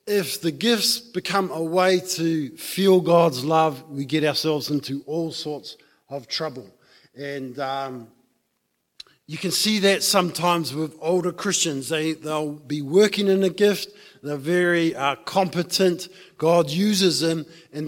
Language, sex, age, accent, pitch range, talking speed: English, male, 50-69, Australian, 145-180 Hz, 150 wpm